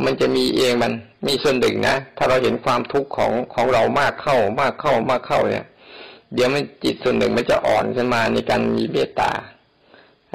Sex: male